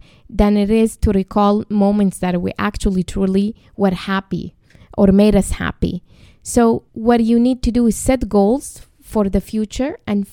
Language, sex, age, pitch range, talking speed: English, female, 20-39, 195-240 Hz, 170 wpm